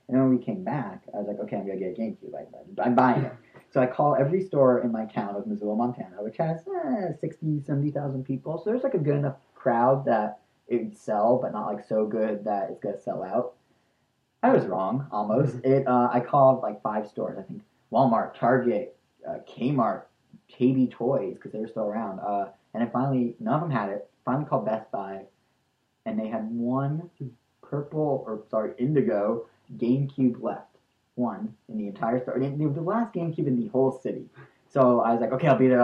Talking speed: 210 wpm